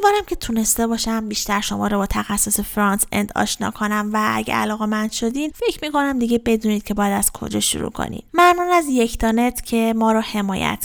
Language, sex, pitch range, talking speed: Persian, female, 210-270 Hz, 200 wpm